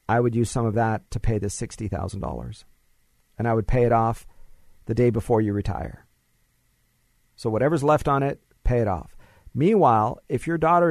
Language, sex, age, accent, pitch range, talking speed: English, male, 40-59, American, 115-135 Hz, 180 wpm